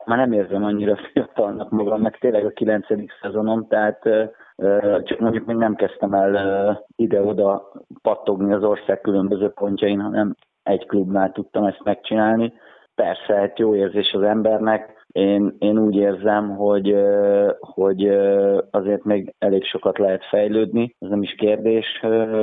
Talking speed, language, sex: 140 wpm, Hungarian, male